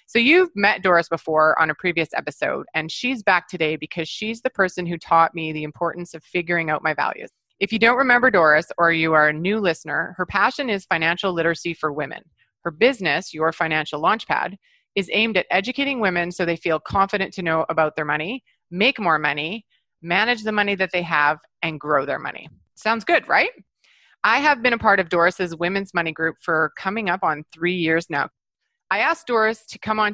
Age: 30-49